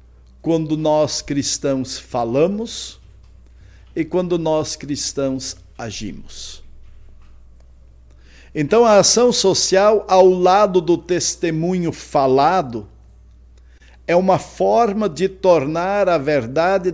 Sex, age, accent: male, 60-79, Brazilian